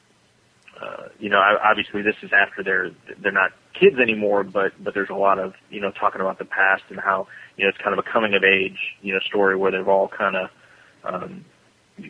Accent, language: American, English